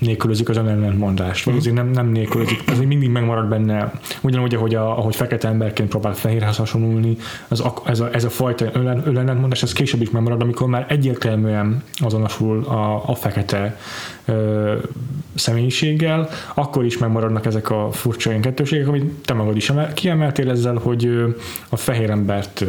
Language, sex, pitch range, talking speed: Hungarian, male, 110-140 Hz, 150 wpm